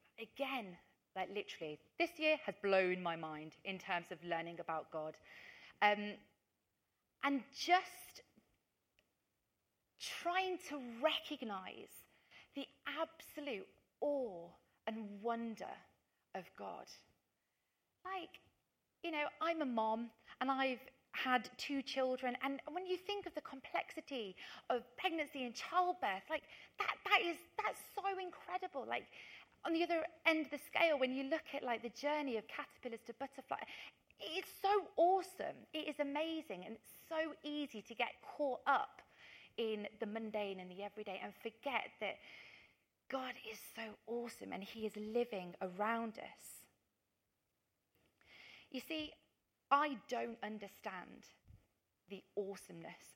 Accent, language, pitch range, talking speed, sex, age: British, English, 215-315 Hz, 130 wpm, female, 30-49